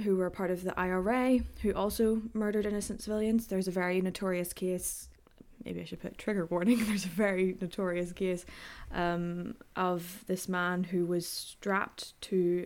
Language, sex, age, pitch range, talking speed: English, female, 10-29, 185-220 Hz, 165 wpm